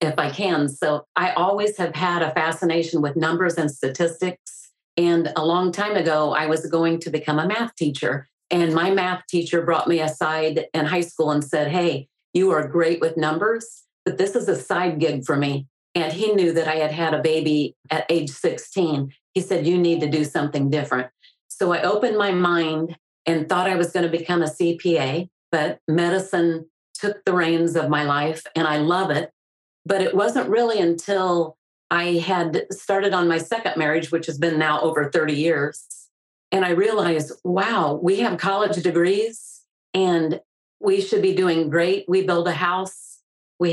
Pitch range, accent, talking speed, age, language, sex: 155-180 Hz, American, 190 wpm, 40-59, English, female